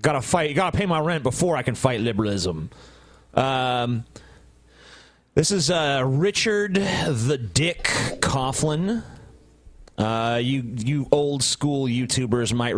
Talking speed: 125 wpm